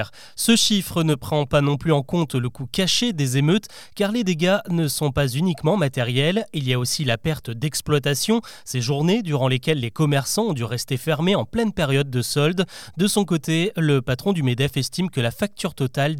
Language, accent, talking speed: French, French, 205 wpm